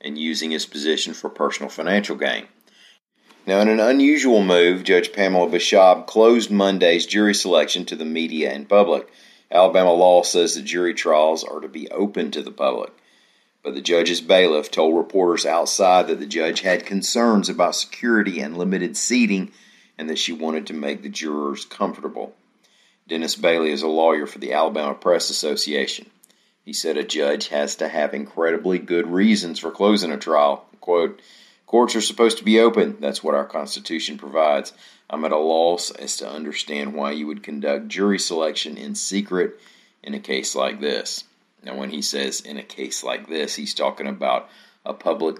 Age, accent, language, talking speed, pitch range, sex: 40-59, American, English, 175 wpm, 75-100 Hz, male